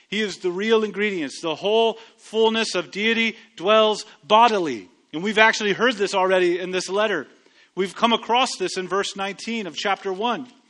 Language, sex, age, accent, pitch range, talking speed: English, male, 30-49, American, 195-260 Hz, 175 wpm